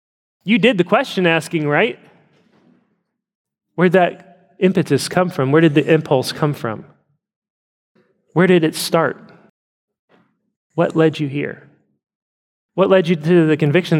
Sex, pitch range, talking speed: male, 125-165 Hz, 135 wpm